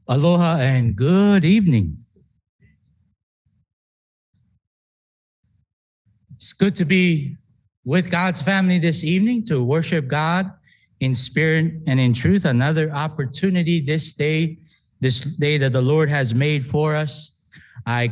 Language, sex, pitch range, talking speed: English, male, 130-170 Hz, 115 wpm